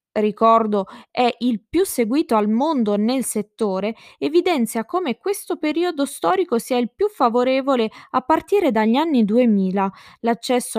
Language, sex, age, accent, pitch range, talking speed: Italian, female, 20-39, native, 210-255 Hz, 135 wpm